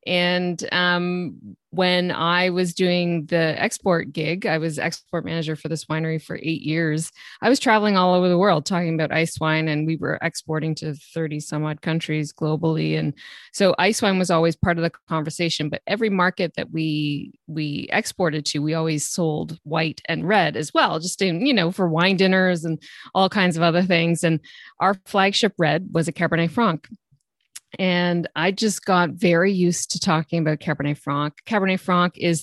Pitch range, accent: 160-185 Hz, American